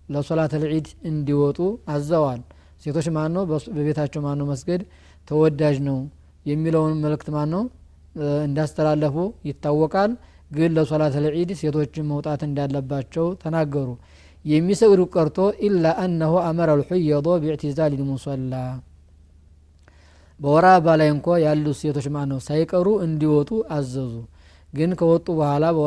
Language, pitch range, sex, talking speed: Amharic, 140-165 Hz, male, 90 wpm